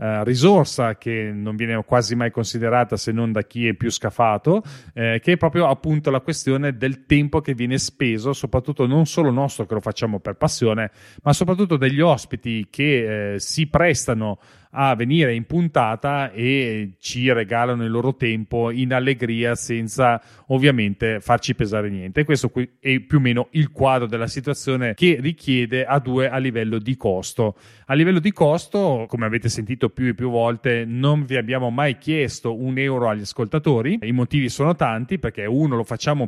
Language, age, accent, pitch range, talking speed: Italian, 30-49, native, 115-145 Hz, 175 wpm